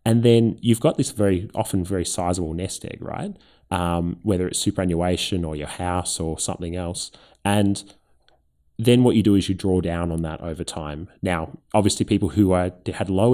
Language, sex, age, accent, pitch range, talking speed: English, male, 20-39, Australian, 85-105 Hz, 190 wpm